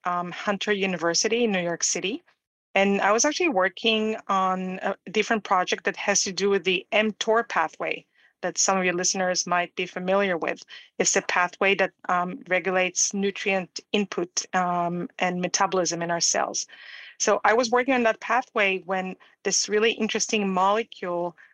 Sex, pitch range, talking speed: female, 185-215 Hz, 165 wpm